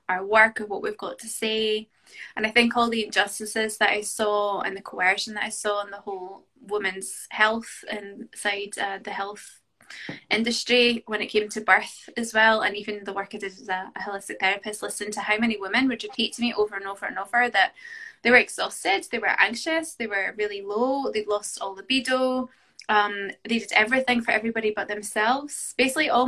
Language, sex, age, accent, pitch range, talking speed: English, female, 10-29, British, 205-235 Hz, 205 wpm